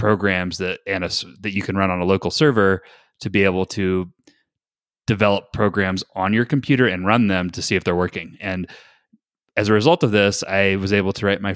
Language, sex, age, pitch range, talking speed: English, male, 30-49, 95-115 Hz, 215 wpm